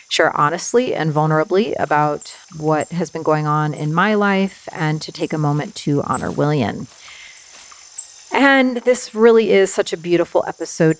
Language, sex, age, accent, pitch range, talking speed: English, female, 40-59, American, 160-210 Hz, 160 wpm